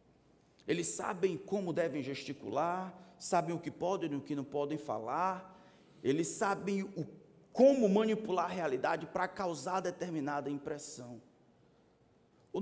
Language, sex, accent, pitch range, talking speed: Portuguese, male, Brazilian, 175-225 Hz, 125 wpm